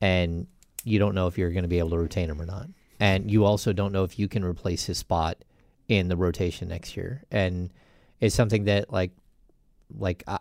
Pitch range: 90-110 Hz